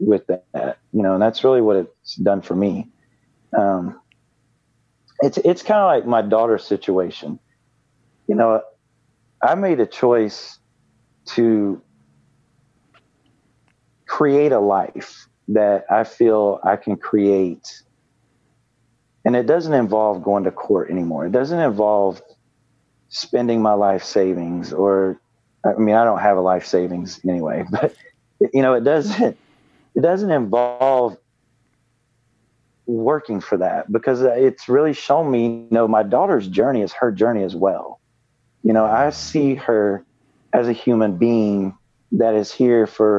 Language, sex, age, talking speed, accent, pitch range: English, male, 40-59, 140 wpm, American, 100-125 Hz